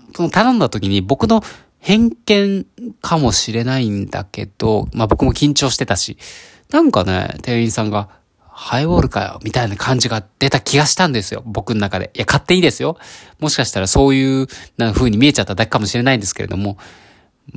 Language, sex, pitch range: Japanese, male, 100-145 Hz